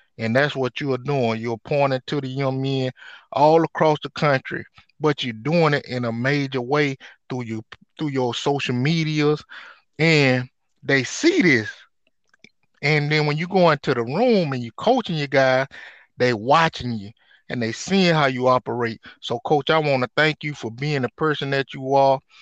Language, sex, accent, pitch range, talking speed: English, male, American, 125-155 Hz, 185 wpm